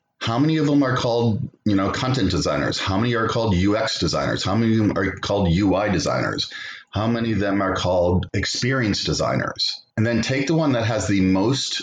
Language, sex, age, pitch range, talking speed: English, male, 30-49, 95-135 Hz, 210 wpm